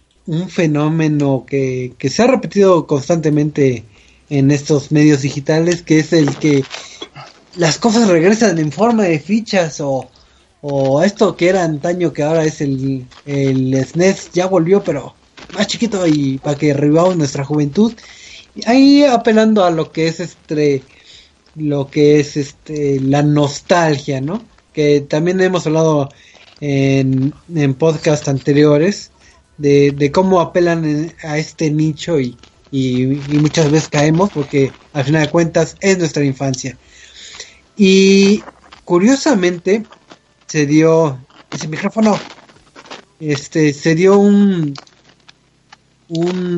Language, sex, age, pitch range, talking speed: Spanish, male, 20-39, 140-180 Hz, 130 wpm